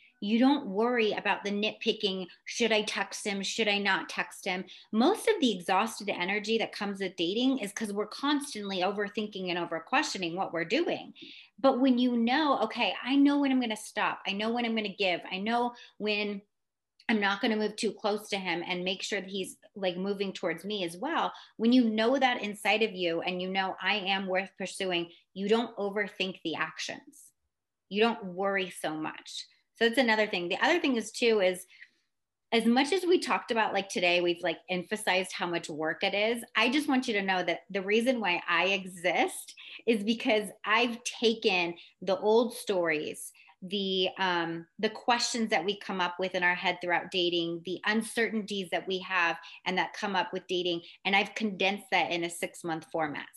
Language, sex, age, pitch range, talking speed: English, female, 30-49, 185-230 Hz, 200 wpm